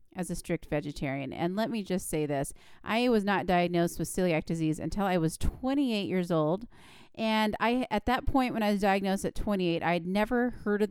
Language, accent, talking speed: English, American, 215 wpm